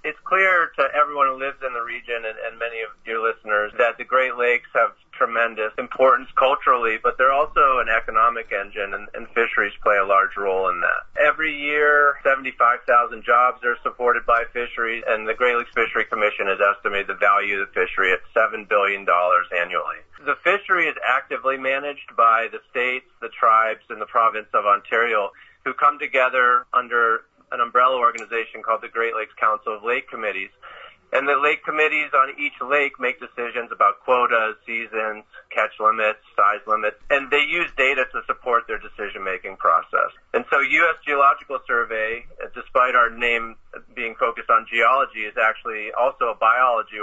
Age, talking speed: 30-49, 170 wpm